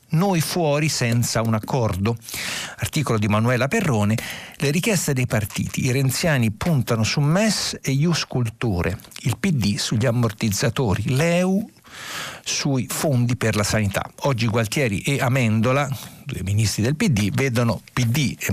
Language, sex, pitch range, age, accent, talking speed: Italian, male, 110-150 Hz, 50-69, native, 135 wpm